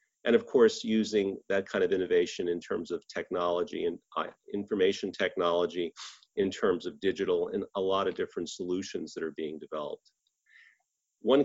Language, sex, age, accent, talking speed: English, male, 40-59, American, 160 wpm